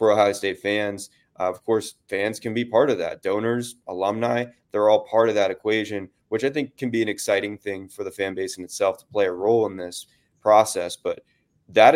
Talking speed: 215 wpm